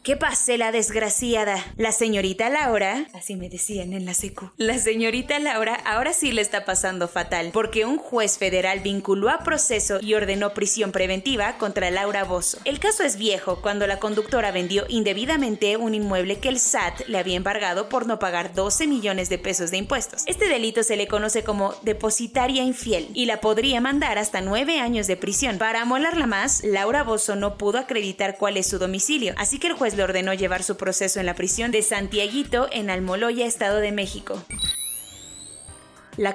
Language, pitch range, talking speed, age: Spanish, 190-235 Hz, 185 wpm, 20-39